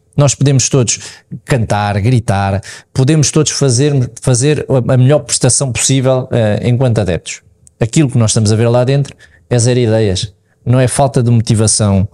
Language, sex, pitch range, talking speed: Portuguese, male, 105-135 Hz, 155 wpm